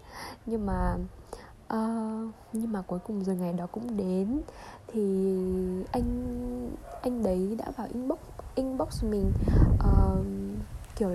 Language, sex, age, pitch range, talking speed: Vietnamese, female, 10-29, 190-240 Hz, 115 wpm